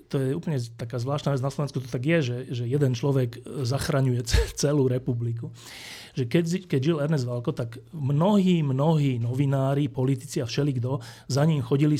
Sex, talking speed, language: male, 165 wpm, Slovak